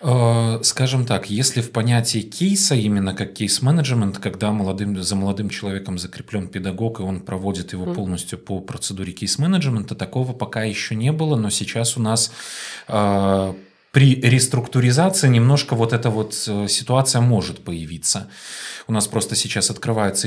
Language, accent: Russian, native